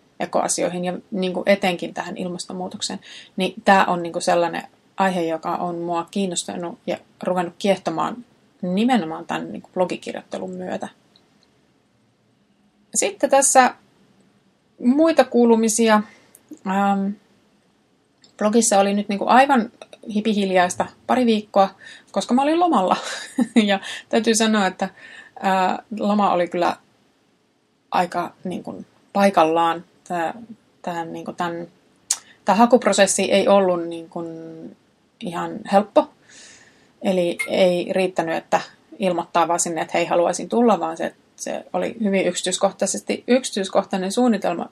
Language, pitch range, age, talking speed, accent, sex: Finnish, 180-225 Hz, 30-49, 105 wpm, native, female